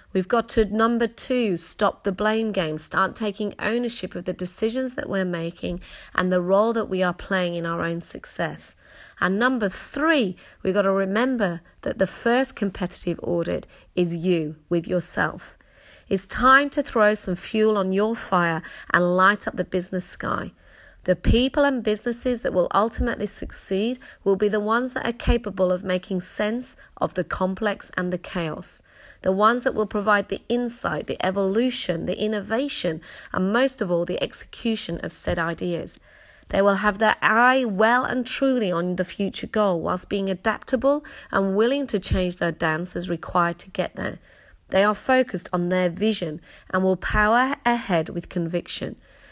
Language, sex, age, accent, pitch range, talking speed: English, female, 40-59, British, 180-230 Hz, 175 wpm